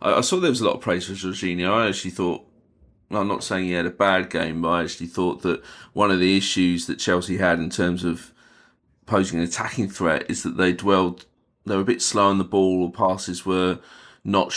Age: 30-49